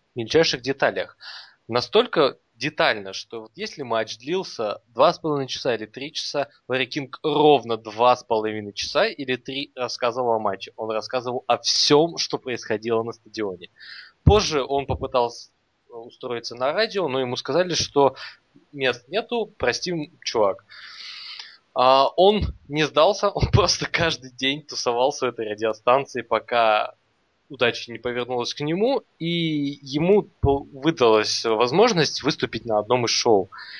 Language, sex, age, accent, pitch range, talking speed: Russian, male, 20-39, native, 115-150 Hz, 130 wpm